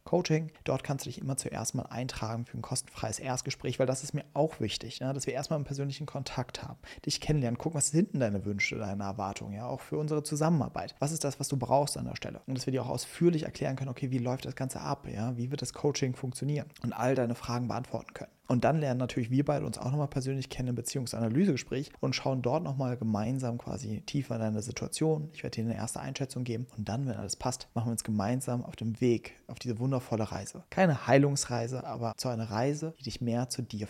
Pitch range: 120-145 Hz